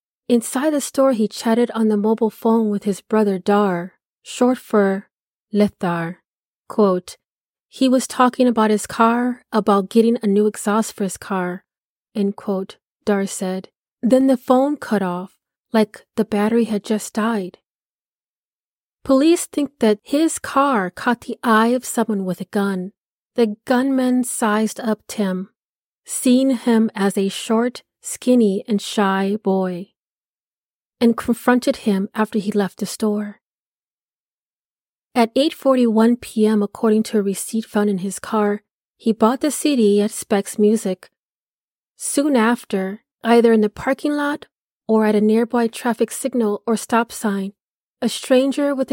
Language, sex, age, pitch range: English, female, 30-49, 205-245 Hz